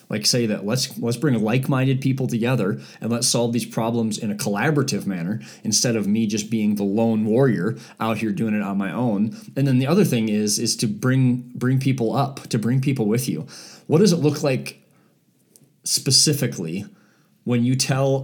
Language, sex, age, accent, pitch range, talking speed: English, male, 30-49, American, 115-140 Hz, 195 wpm